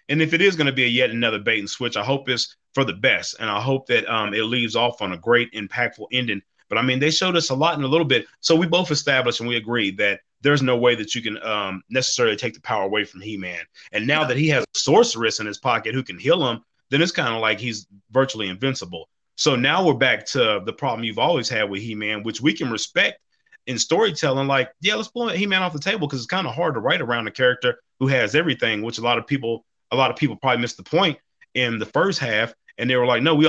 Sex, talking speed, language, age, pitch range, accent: male, 270 wpm, English, 30-49, 115-150 Hz, American